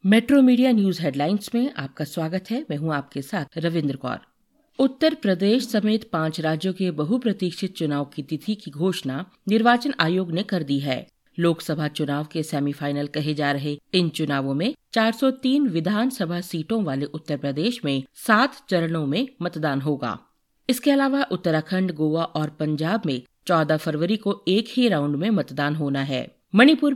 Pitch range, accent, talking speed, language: 150-225 Hz, native, 160 wpm, Hindi